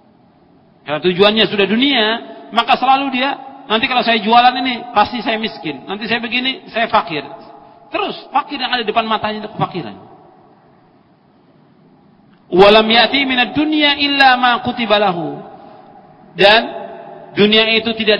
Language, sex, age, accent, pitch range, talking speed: Indonesian, male, 40-59, native, 195-265 Hz, 110 wpm